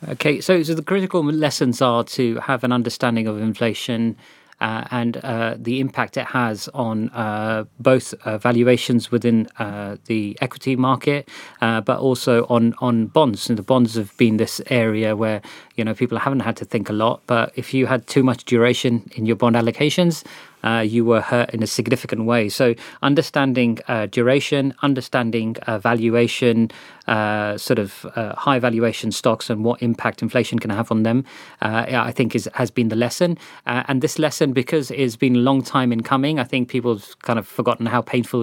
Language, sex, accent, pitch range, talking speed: English, male, British, 115-130 Hz, 190 wpm